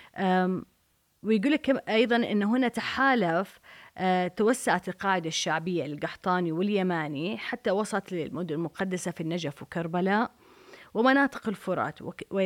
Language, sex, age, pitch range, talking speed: Arabic, female, 30-49, 180-225 Hz, 90 wpm